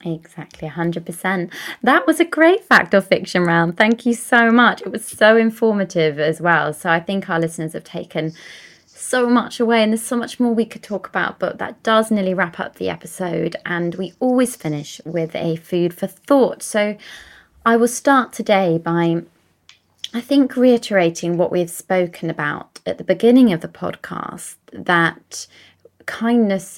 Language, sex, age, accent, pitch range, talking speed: English, female, 20-39, British, 165-215 Hz, 175 wpm